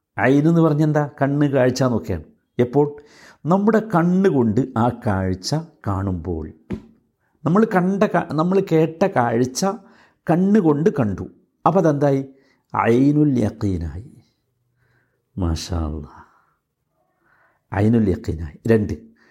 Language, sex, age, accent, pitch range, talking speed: Malayalam, male, 60-79, native, 110-160 Hz, 70 wpm